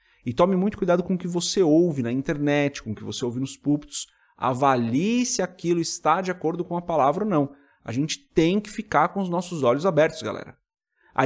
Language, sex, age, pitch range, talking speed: Portuguese, male, 30-49, 140-190 Hz, 220 wpm